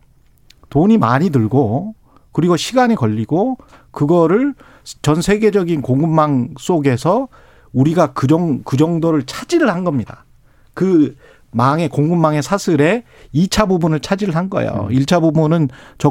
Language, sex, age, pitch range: Korean, male, 40-59, 130-185 Hz